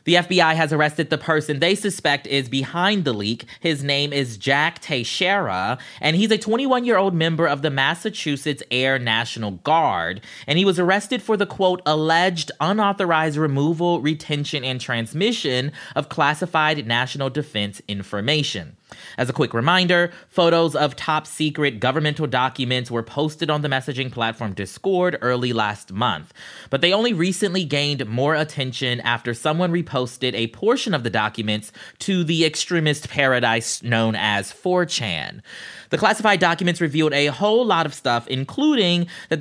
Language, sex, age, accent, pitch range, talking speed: English, male, 20-39, American, 125-170 Hz, 150 wpm